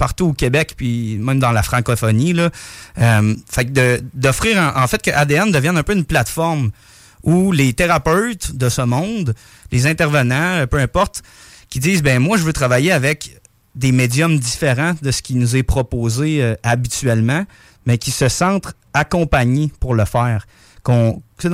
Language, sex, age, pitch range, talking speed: French, male, 30-49, 120-160 Hz, 175 wpm